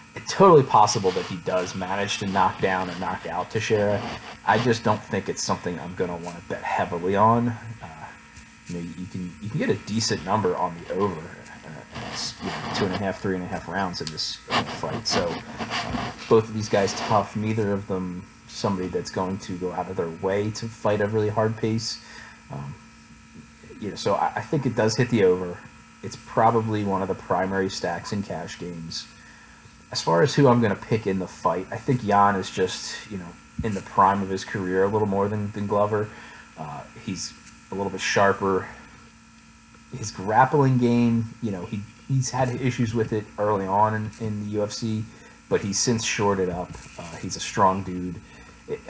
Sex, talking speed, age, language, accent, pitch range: male, 210 wpm, 30-49, English, American, 90-110 Hz